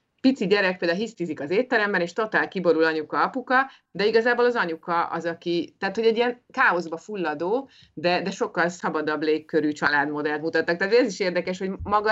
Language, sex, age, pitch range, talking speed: Hungarian, female, 30-49, 155-205 Hz, 180 wpm